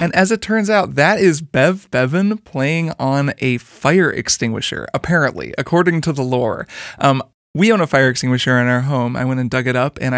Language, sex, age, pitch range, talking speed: English, male, 20-39, 125-155 Hz, 205 wpm